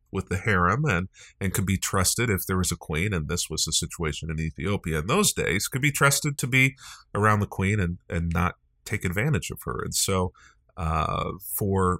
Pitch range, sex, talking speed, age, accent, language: 85-130 Hz, male, 210 wpm, 40-59, American, English